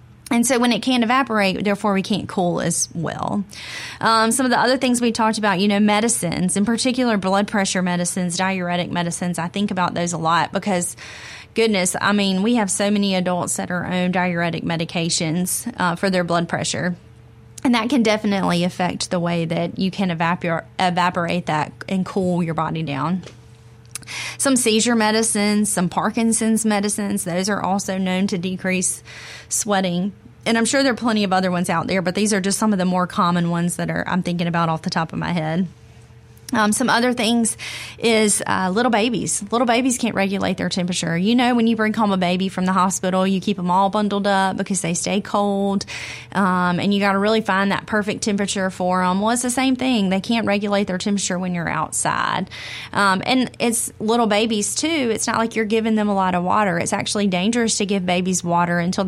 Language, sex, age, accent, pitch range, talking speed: English, female, 20-39, American, 175-220 Hz, 205 wpm